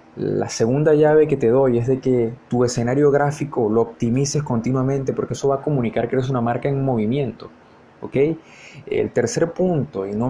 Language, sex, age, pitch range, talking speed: Spanish, male, 20-39, 115-145 Hz, 185 wpm